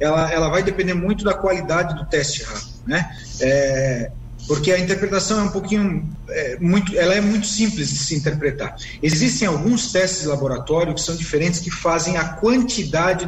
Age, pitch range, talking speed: 40-59, 150-200 Hz, 175 wpm